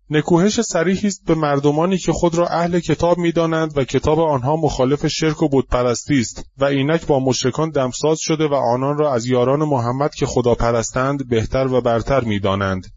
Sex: male